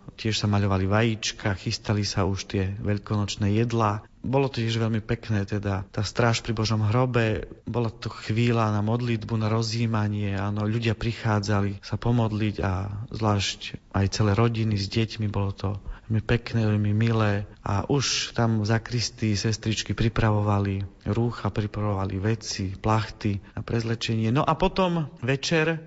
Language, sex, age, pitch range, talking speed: Slovak, male, 40-59, 110-135 Hz, 145 wpm